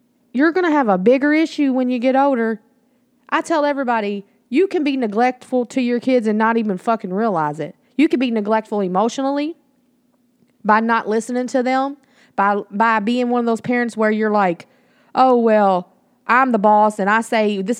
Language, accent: English, American